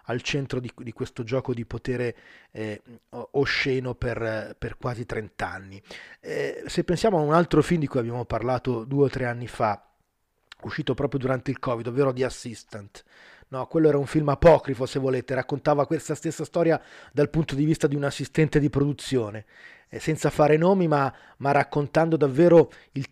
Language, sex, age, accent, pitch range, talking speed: Italian, male, 30-49, native, 120-145 Hz, 180 wpm